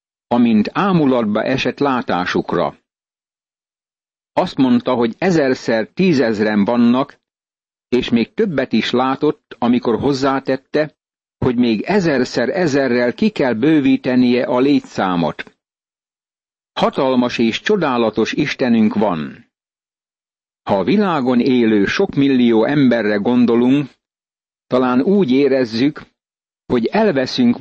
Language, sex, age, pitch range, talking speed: Hungarian, male, 60-79, 120-140 Hz, 95 wpm